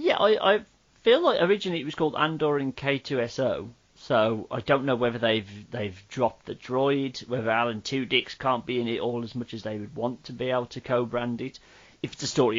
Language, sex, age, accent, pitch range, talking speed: English, male, 30-49, British, 115-150 Hz, 225 wpm